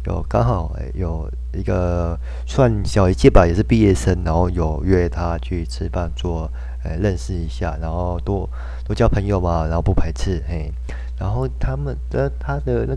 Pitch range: 80-100 Hz